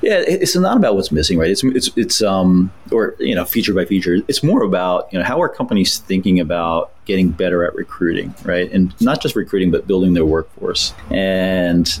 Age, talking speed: 30-49, 205 wpm